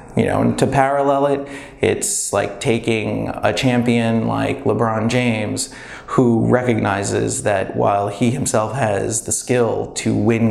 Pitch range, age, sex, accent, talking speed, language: 105-125 Hz, 30-49, male, American, 145 wpm, English